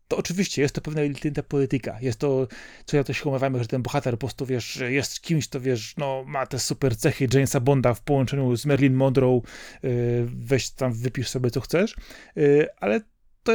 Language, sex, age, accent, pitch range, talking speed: Polish, male, 30-49, native, 130-150 Hz, 190 wpm